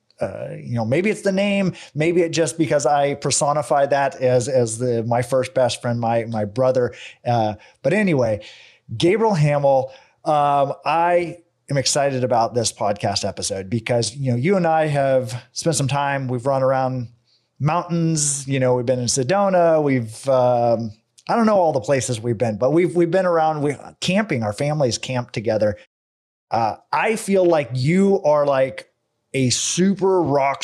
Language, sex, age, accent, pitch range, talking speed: English, male, 30-49, American, 125-160 Hz, 170 wpm